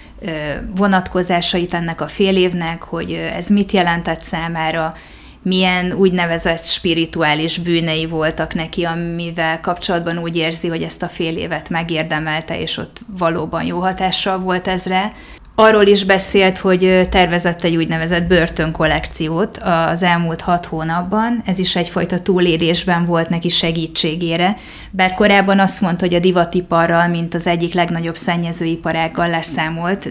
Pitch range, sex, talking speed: 165-185 Hz, female, 130 wpm